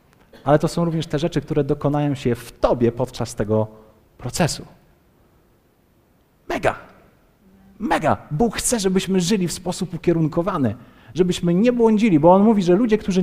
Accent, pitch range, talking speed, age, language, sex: native, 135-185 Hz, 145 wpm, 30-49, Polish, male